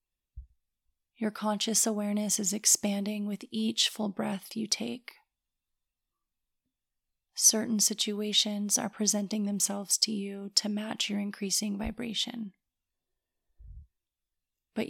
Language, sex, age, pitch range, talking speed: English, female, 30-49, 195-215 Hz, 95 wpm